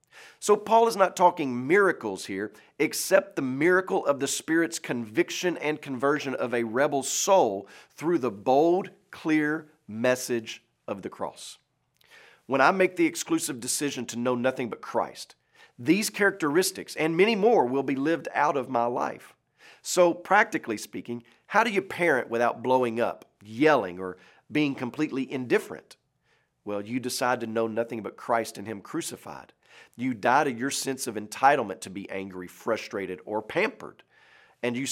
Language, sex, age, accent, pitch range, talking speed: English, male, 40-59, American, 115-160 Hz, 160 wpm